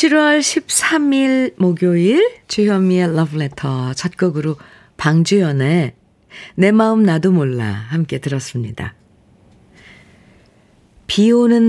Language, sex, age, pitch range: Korean, female, 50-69, 140-195 Hz